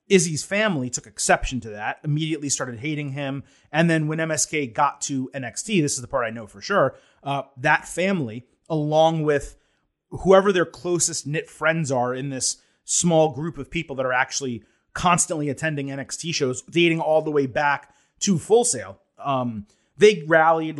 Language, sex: English, male